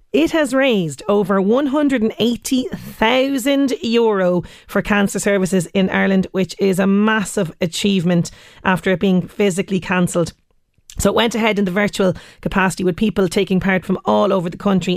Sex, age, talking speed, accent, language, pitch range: female, 30-49, 150 wpm, Irish, English, 185-210 Hz